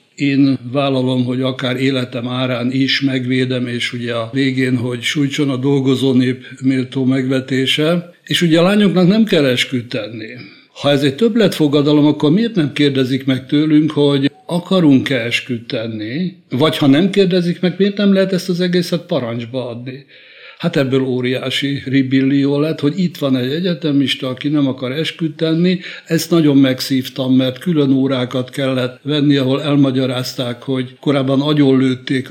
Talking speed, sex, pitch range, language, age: 145 wpm, male, 130-150 Hz, Hungarian, 60-79